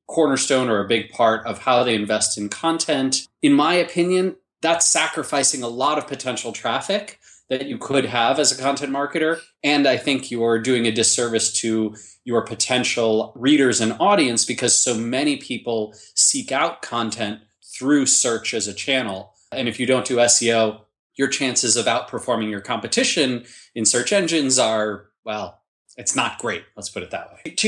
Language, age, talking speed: English, 20-39, 175 wpm